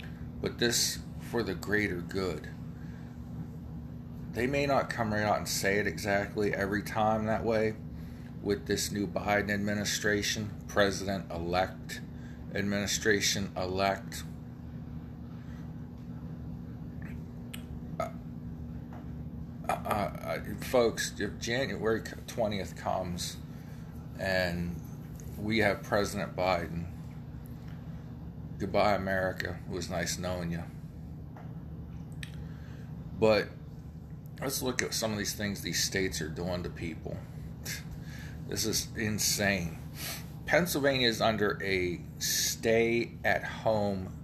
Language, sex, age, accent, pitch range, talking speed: English, male, 40-59, American, 80-110 Hz, 90 wpm